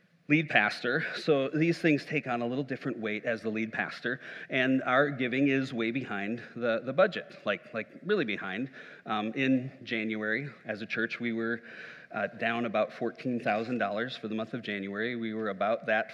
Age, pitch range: 40-59, 125-165 Hz